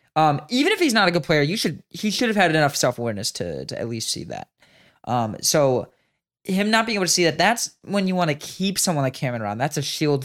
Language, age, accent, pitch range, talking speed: English, 20-39, American, 125-185 Hz, 265 wpm